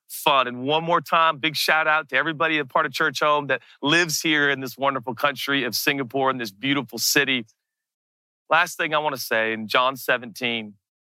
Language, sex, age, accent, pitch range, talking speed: English, male, 40-59, American, 125-155 Hz, 200 wpm